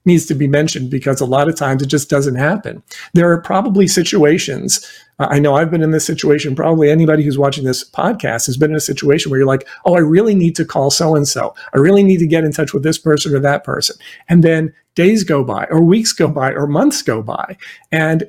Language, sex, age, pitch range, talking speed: English, male, 50-69, 140-170 Hz, 245 wpm